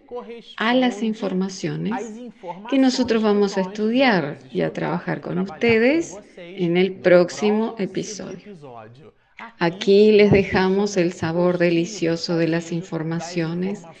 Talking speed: 110 wpm